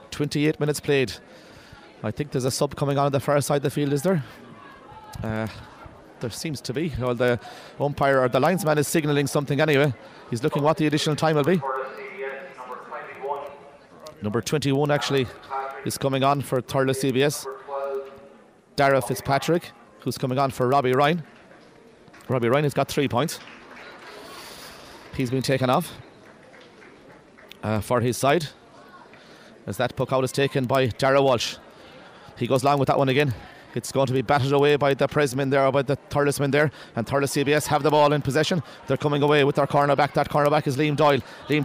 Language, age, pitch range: English, 30-49, 135-165 Hz